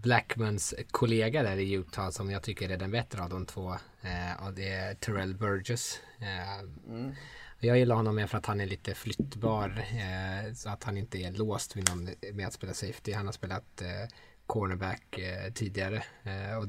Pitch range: 95-115 Hz